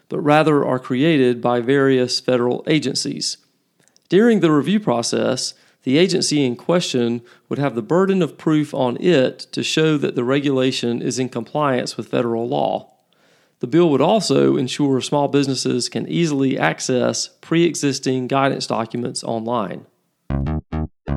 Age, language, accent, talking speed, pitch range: 40-59, English, American, 140 wpm, 120-155 Hz